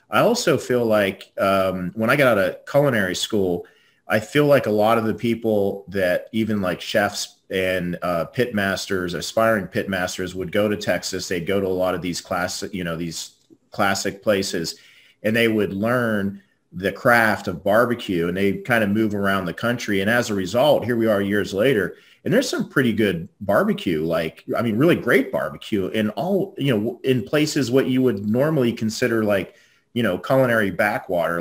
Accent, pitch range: American, 95-115 Hz